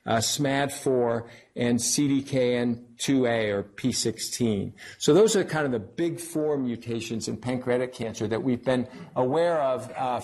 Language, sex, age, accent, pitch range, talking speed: English, male, 50-69, American, 120-145 Hz, 140 wpm